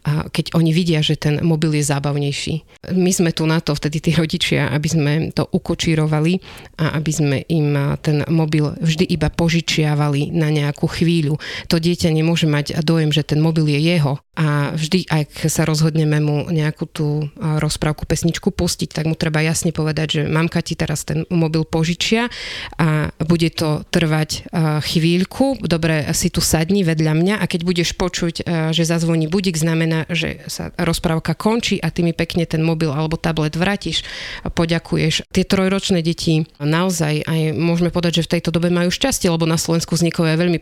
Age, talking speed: 30-49, 175 wpm